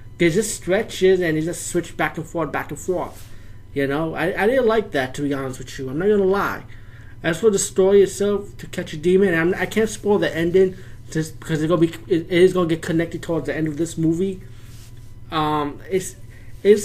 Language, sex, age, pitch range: English, male, 20-39, 125-180 Hz